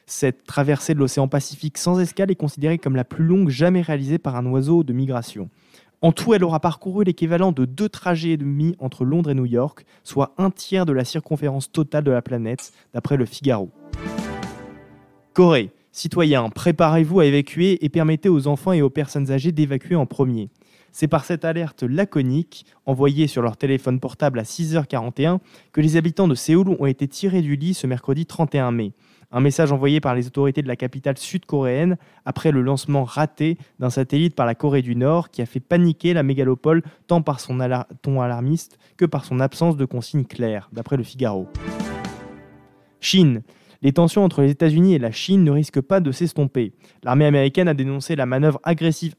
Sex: male